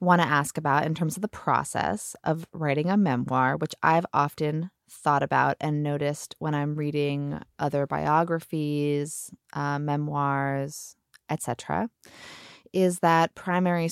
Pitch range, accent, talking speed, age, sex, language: 145-185 Hz, American, 135 wpm, 20-39, female, English